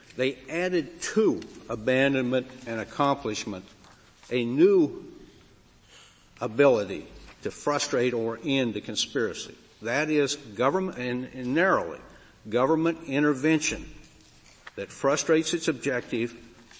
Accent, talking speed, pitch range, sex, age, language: American, 95 wpm, 120-145 Hz, male, 60-79, English